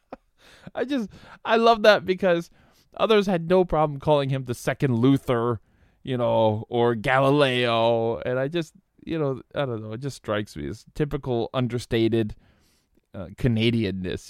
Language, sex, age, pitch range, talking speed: English, male, 20-39, 110-155 Hz, 150 wpm